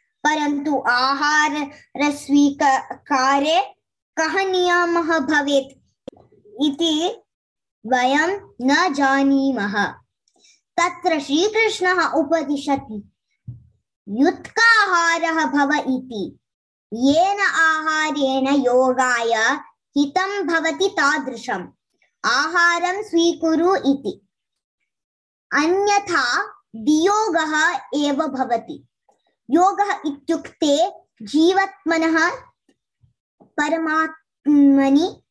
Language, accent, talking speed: English, Indian, 60 wpm